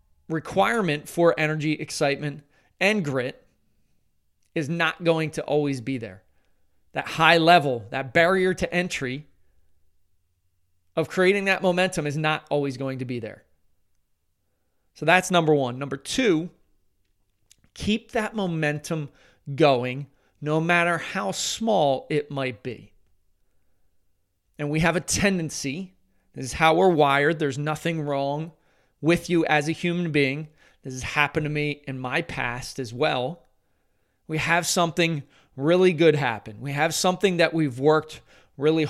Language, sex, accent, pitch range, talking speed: English, male, American, 100-165 Hz, 140 wpm